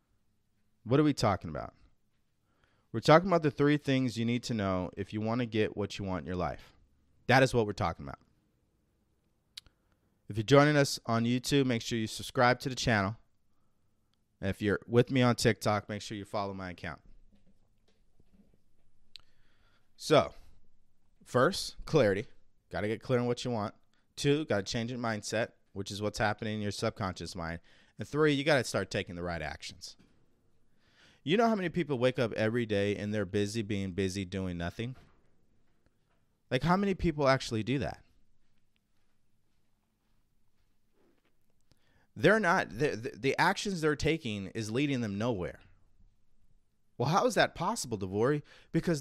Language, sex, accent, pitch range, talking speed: English, male, American, 100-125 Hz, 165 wpm